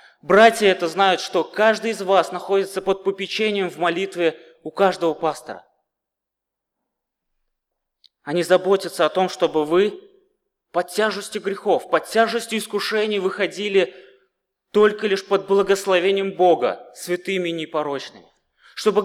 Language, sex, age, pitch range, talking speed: Russian, male, 20-39, 160-205 Hz, 115 wpm